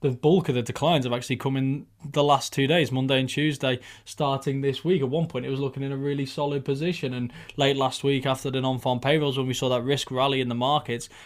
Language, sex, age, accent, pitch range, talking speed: English, male, 20-39, British, 130-150 Hz, 250 wpm